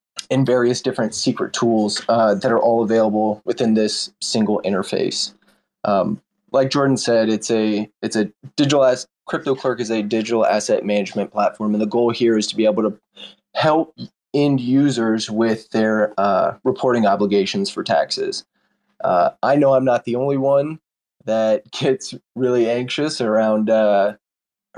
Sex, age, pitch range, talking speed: male, 20-39, 110-130 Hz, 155 wpm